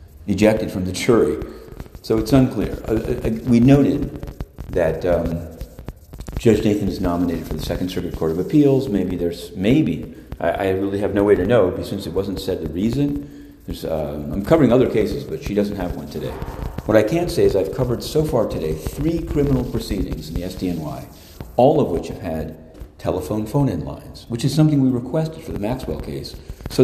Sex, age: male, 40-59